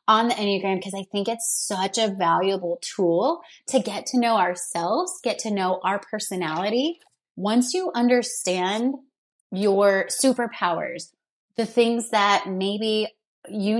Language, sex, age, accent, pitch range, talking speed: English, female, 30-49, American, 180-225 Hz, 135 wpm